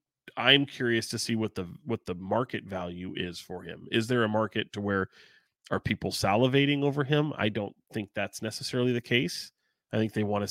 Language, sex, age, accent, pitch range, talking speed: English, male, 30-49, American, 95-115 Hz, 205 wpm